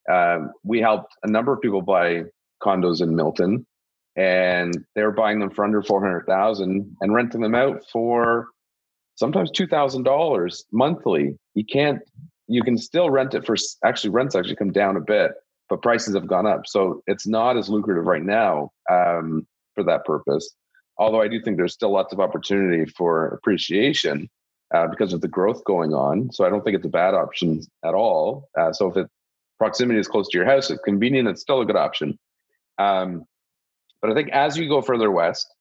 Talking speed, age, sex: 190 wpm, 30-49, male